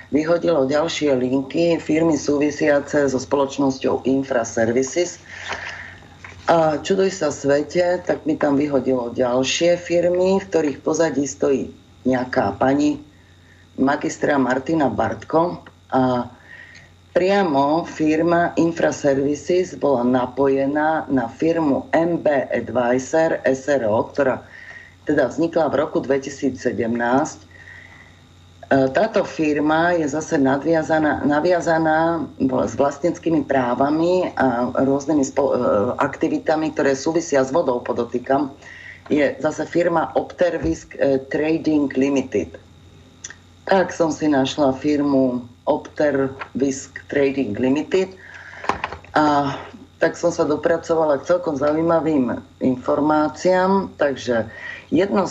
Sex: female